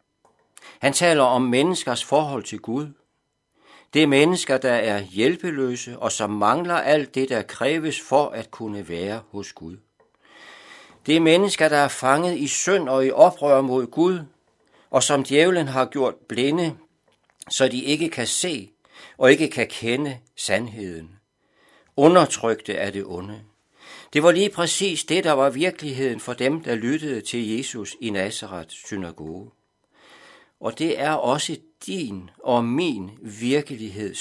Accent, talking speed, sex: native, 145 wpm, male